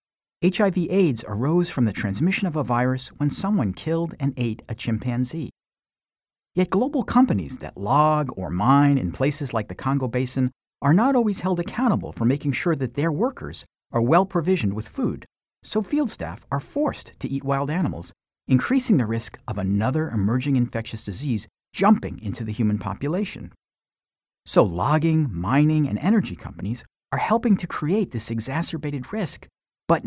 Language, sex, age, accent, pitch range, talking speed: English, male, 50-69, American, 115-180 Hz, 160 wpm